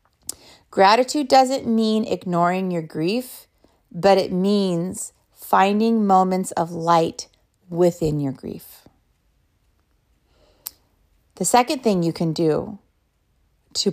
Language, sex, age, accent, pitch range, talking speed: English, female, 30-49, American, 160-215 Hz, 100 wpm